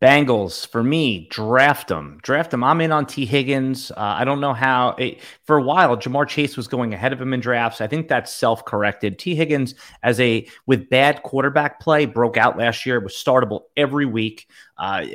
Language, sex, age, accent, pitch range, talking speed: English, male, 30-49, American, 115-145 Hz, 205 wpm